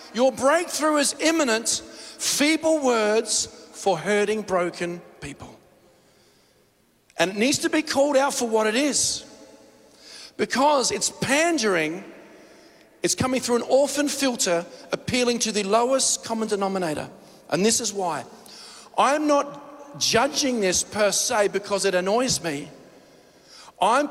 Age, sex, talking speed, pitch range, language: 40-59, male, 125 wpm, 200-270 Hz, English